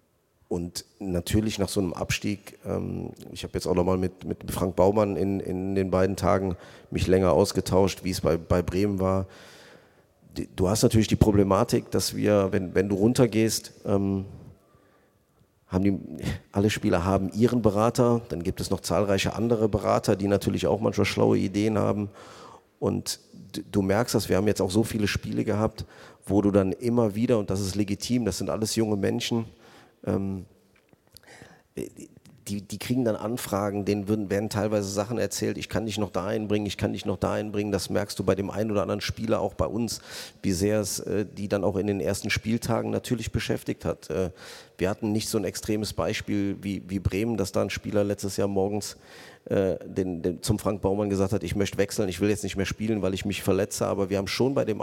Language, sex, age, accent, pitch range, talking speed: German, male, 40-59, German, 95-110 Hz, 195 wpm